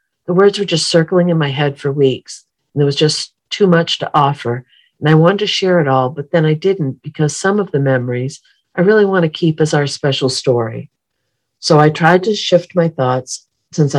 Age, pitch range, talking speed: 50-69, 130-165 Hz, 220 wpm